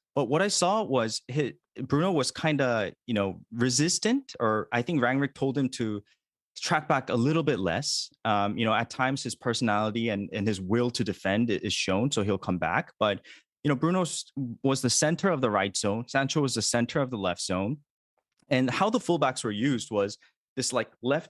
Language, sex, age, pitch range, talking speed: English, male, 20-39, 110-140 Hz, 205 wpm